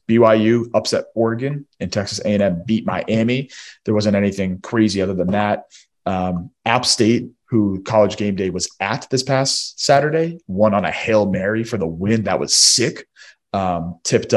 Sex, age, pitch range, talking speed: male, 30-49, 95-115 Hz, 165 wpm